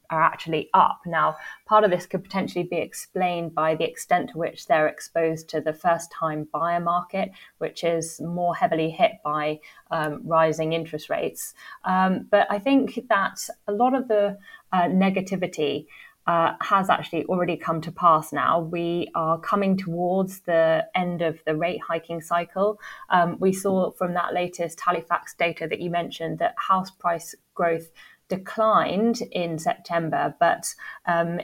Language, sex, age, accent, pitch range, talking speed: English, female, 20-39, British, 165-190 Hz, 160 wpm